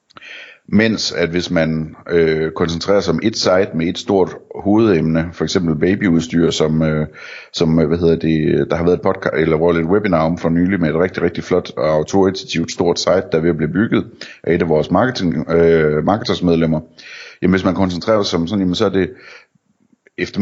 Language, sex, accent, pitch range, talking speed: Danish, male, native, 80-90 Hz, 205 wpm